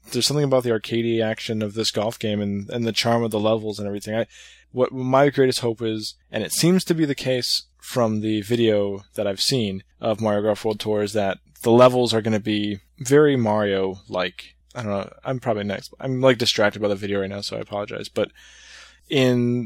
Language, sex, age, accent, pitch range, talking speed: English, male, 20-39, American, 105-120 Hz, 220 wpm